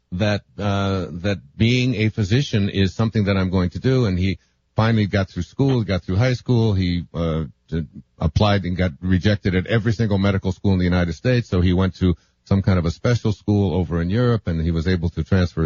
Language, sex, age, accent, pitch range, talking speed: English, male, 60-79, American, 95-125 Hz, 220 wpm